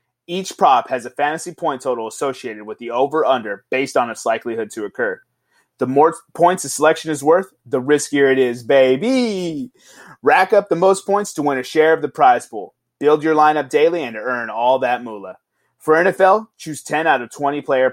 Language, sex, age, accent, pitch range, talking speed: English, male, 30-49, American, 135-180 Hz, 200 wpm